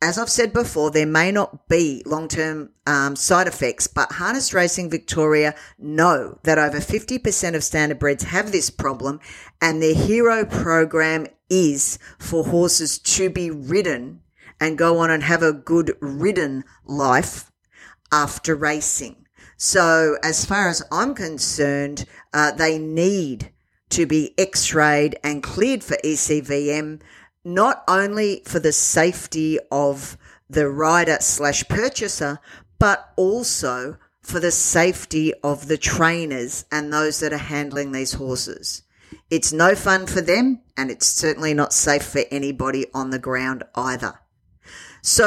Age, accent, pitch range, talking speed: 50-69, Australian, 140-175 Hz, 140 wpm